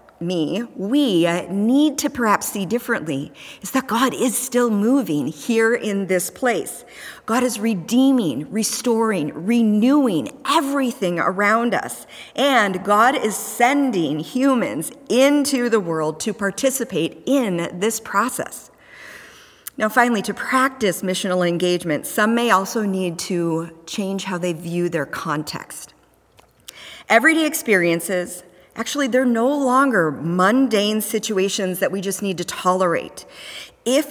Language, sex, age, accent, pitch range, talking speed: English, female, 40-59, American, 180-245 Hz, 125 wpm